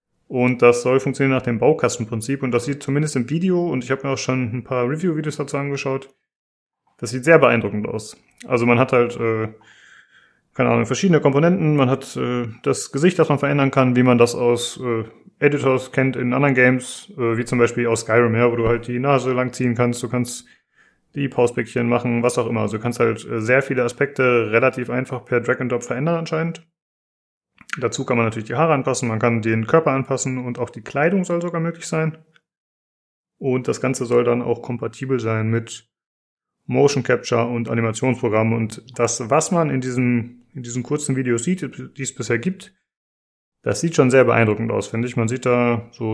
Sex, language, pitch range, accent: male, German, 120-140 Hz, German